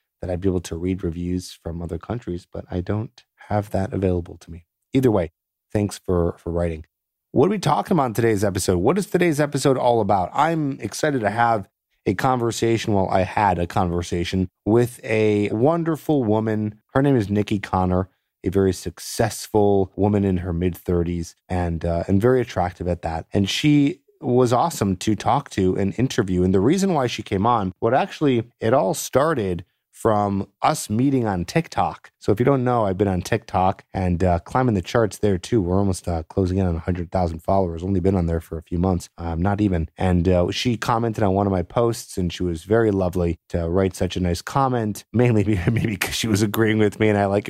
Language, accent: English, American